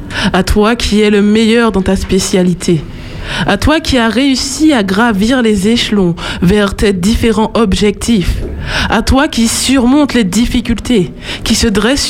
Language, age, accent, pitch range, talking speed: French, 20-39, French, 190-245 Hz, 155 wpm